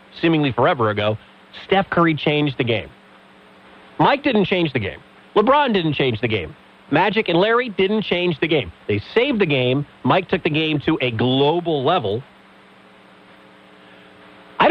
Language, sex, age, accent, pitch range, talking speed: English, male, 30-49, American, 115-170 Hz, 155 wpm